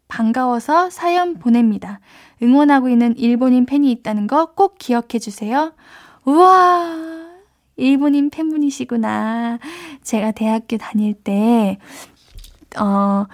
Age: 10-29